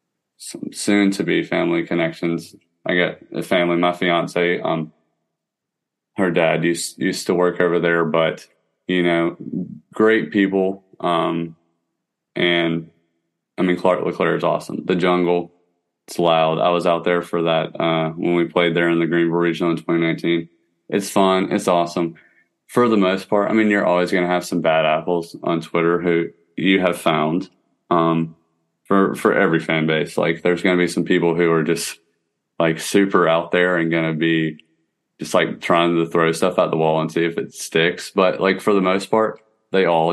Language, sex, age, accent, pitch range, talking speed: English, male, 20-39, American, 85-90 Hz, 180 wpm